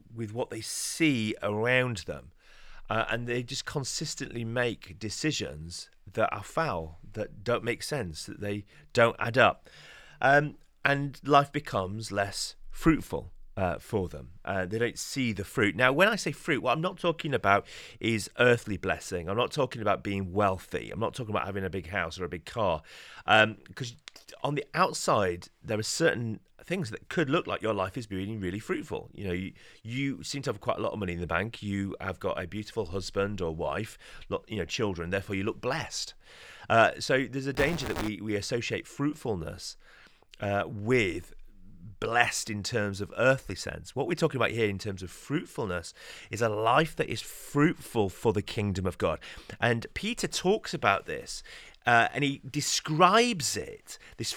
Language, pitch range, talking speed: English, 100-135 Hz, 185 wpm